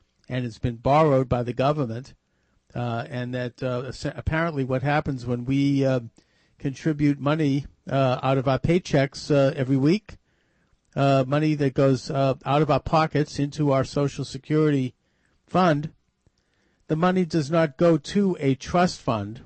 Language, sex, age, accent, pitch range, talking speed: English, male, 50-69, American, 130-150 Hz, 155 wpm